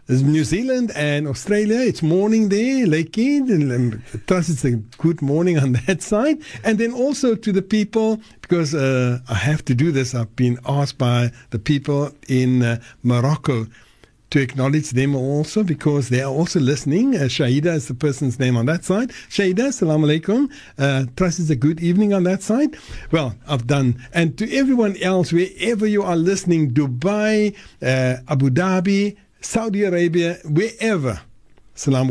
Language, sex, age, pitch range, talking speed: English, male, 60-79, 130-195 Hz, 165 wpm